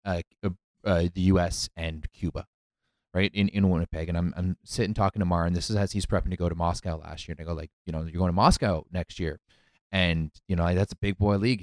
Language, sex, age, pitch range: English, male, 20-39, 90-115 Hz